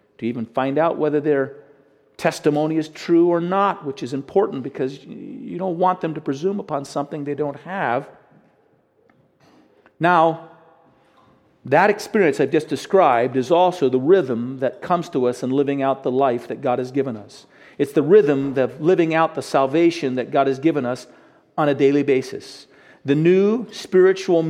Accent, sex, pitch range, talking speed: American, male, 145-200 Hz, 170 wpm